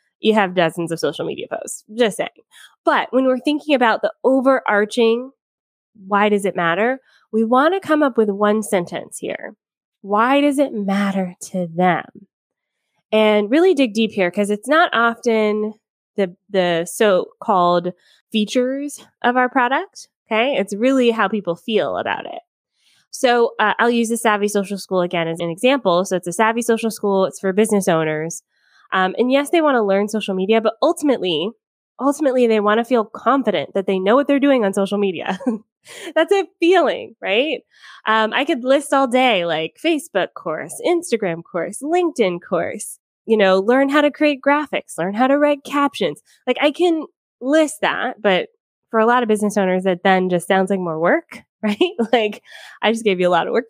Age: 20-39